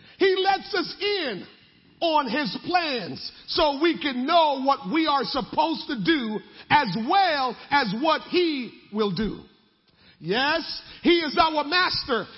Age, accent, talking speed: 40-59, American, 140 wpm